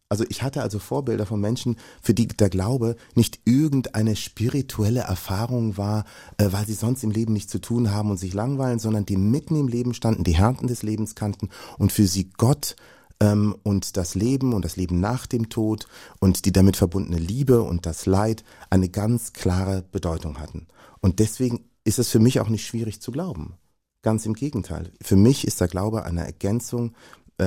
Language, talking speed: German, 190 wpm